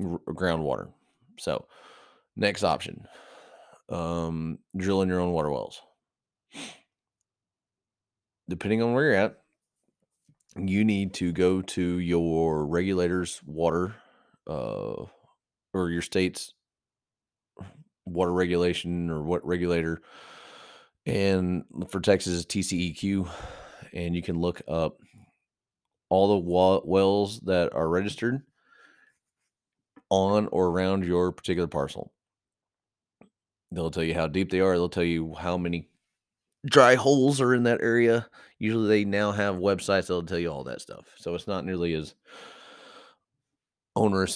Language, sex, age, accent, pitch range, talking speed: English, male, 30-49, American, 85-100 Hz, 120 wpm